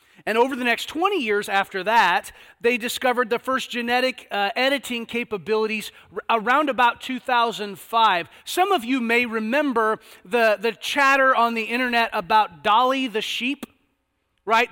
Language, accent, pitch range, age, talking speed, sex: English, American, 205-255 Hz, 30-49, 145 wpm, male